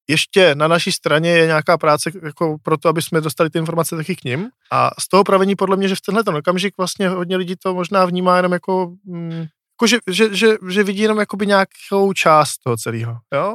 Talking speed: 220 wpm